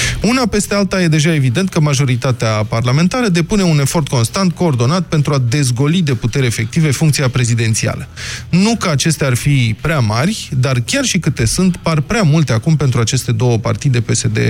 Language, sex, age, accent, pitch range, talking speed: Romanian, male, 20-39, native, 125-170 Hz, 180 wpm